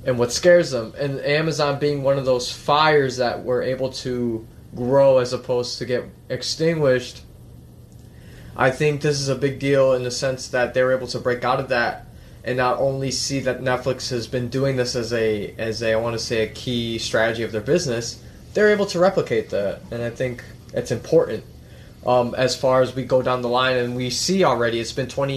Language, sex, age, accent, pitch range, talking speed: English, male, 20-39, American, 120-135 Hz, 210 wpm